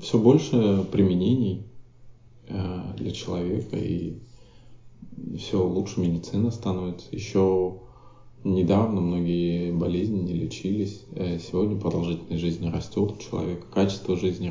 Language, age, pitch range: Russian, 20-39, 95-125 Hz